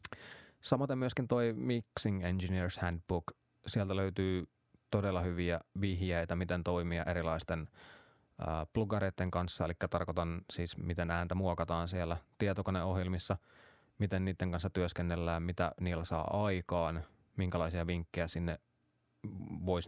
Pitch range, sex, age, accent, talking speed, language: 85-100 Hz, male, 20-39, native, 110 wpm, Finnish